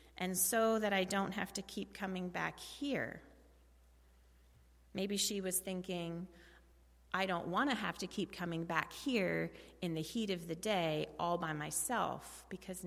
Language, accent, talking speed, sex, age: English, American, 165 wpm, female, 30-49